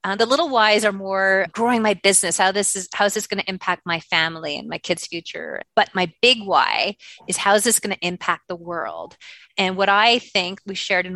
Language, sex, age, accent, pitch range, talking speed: English, female, 30-49, American, 185-230 Hz, 235 wpm